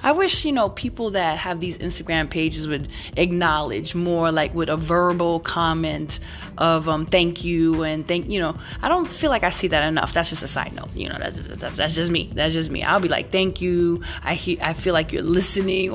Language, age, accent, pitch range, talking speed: English, 20-39, American, 155-190 Hz, 235 wpm